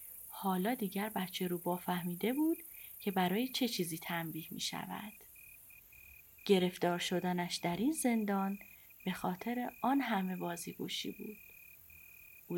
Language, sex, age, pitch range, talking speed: Persian, female, 30-49, 180-250 Hz, 120 wpm